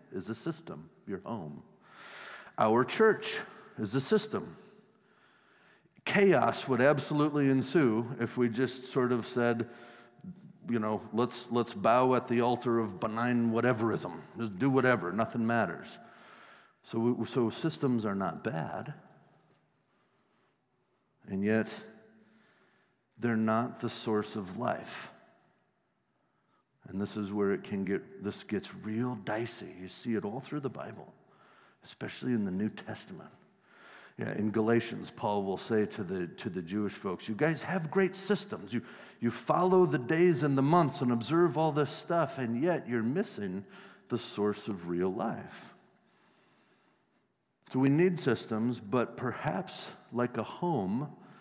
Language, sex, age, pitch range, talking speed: English, male, 50-69, 115-155 Hz, 140 wpm